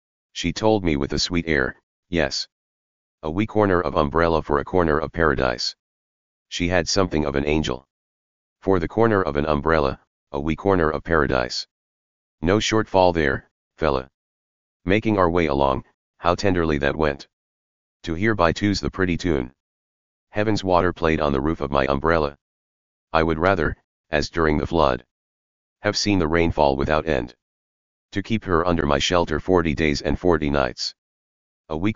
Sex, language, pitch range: male, English, 70-85 Hz